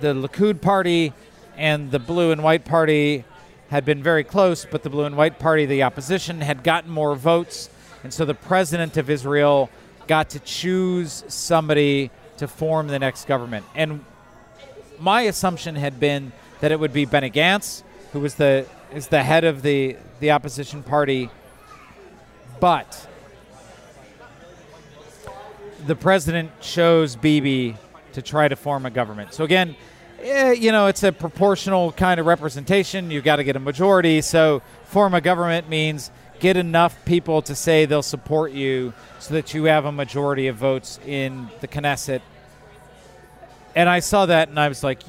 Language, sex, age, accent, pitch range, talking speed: English, male, 40-59, American, 140-170 Hz, 160 wpm